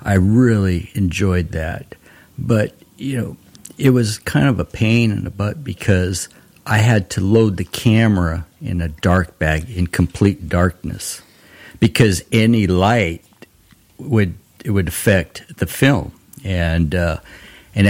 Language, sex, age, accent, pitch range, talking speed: English, male, 60-79, American, 85-110 Hz, 140 wpm